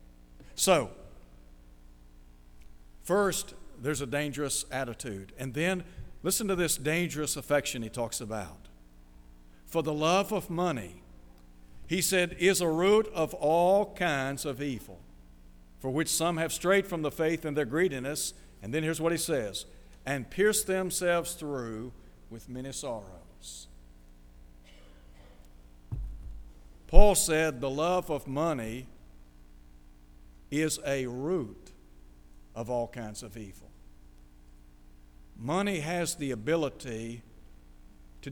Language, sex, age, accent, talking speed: English, male, 60-79, American, 115 wpm